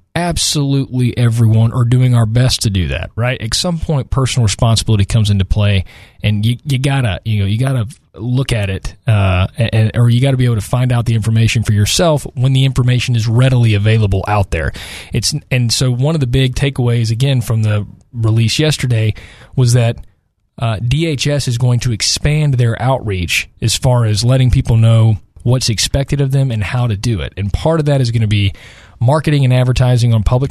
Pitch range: 110-130 Hz